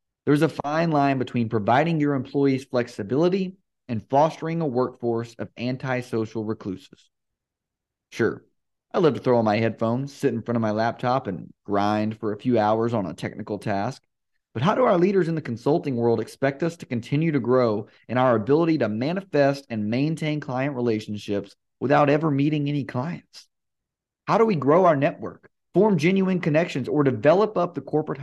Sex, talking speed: male, 175 wpm